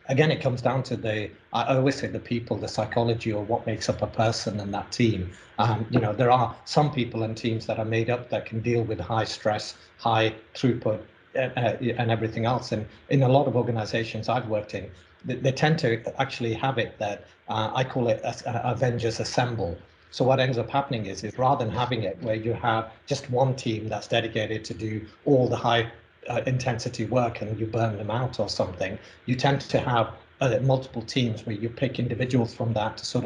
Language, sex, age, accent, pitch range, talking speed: English, male, 40-59, British, 110-125 Hz, 220 wpm